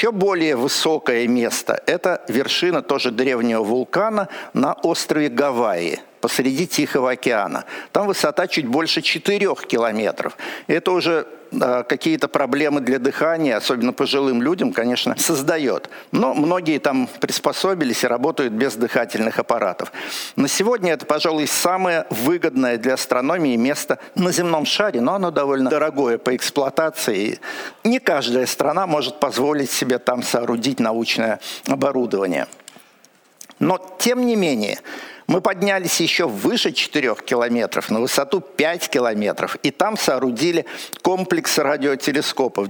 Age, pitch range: 60-79, 130-175 Hz